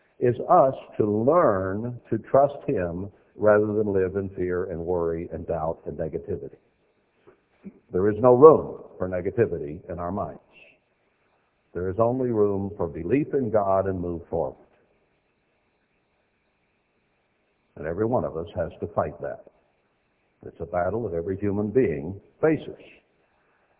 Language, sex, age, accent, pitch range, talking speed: English, male, 60-79, American, 100-135 Hz, 140 wpm